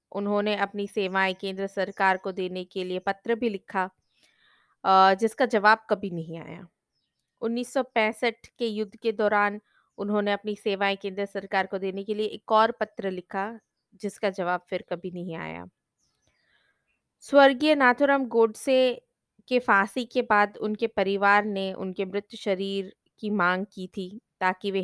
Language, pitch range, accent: Hindi, 195-225 Hz, native